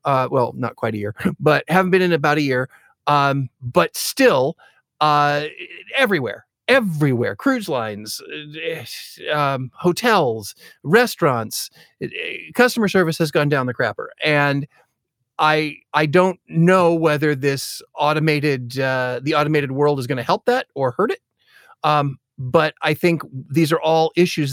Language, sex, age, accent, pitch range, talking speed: English, male, 40-59, American, 135-165 Hz, 145 wpm